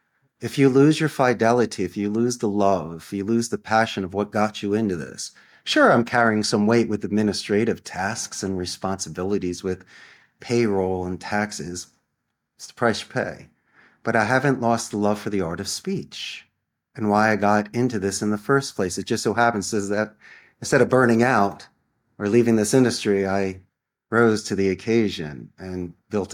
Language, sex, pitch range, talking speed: English, male, 105-135 Hz, 185 wpm